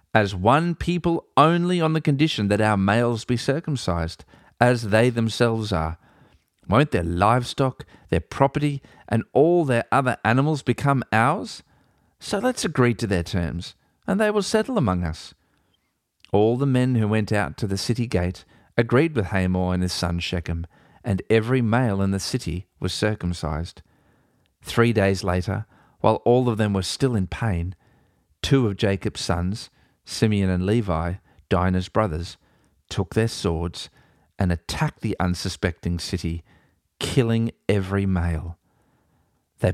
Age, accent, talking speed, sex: 40-59, Australian, 145 wpm, male